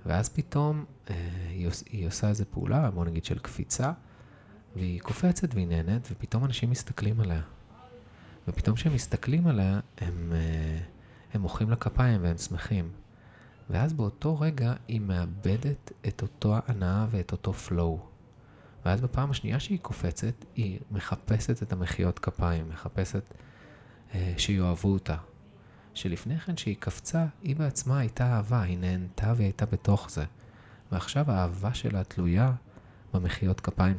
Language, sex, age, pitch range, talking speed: Hebrew, male, 30-49, 90-125 Hz, 135 wpm